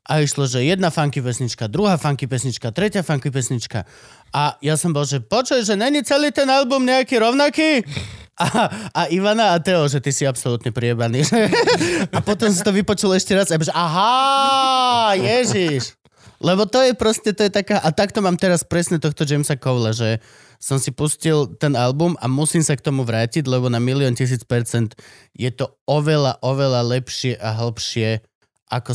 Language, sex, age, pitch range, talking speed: Slovak, male, 20-39, 125-200 Hz, 175 wpm